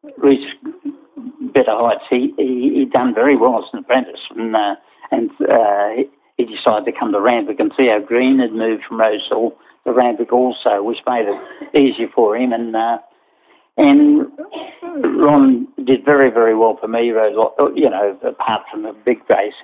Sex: male